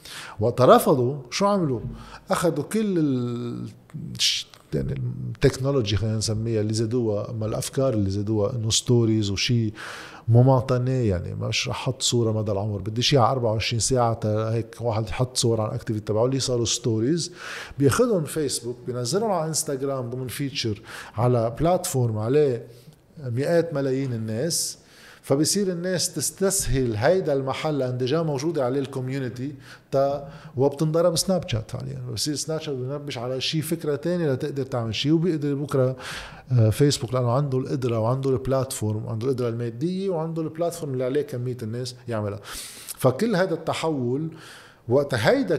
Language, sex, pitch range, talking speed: Arabic, male, 115-150 Hz, 135 wpm